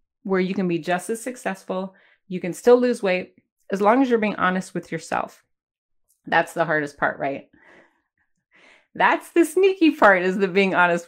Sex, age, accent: female, 30-49, American